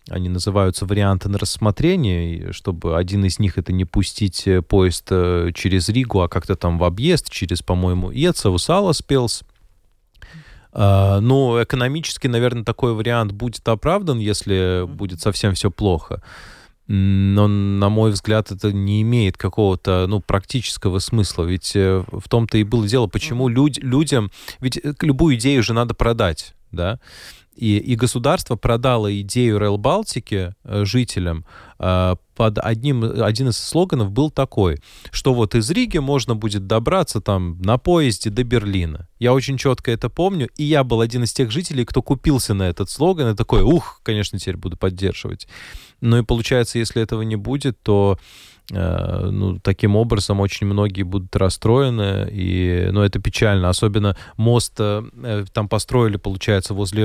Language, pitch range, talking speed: Russian, 95-125 Hz, 145 wpm